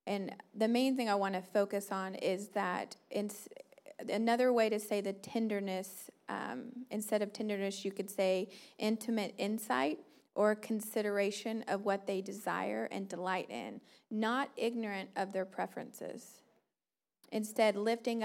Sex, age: female, 30-49